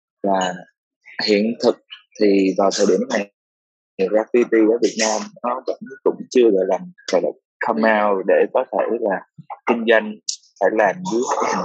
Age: 20-39